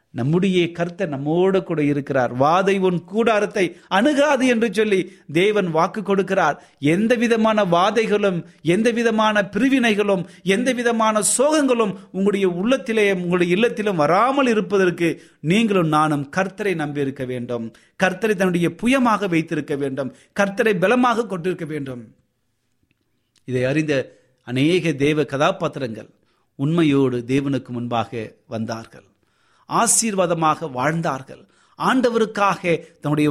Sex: male